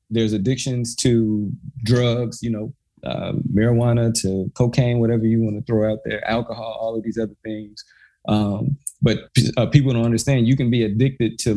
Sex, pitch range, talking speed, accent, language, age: male, 105-120 Hz, 175 wpm, American, English, 20-39